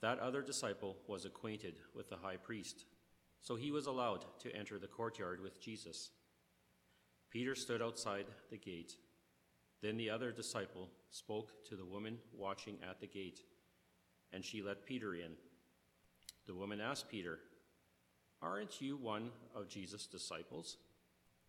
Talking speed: 140 wpm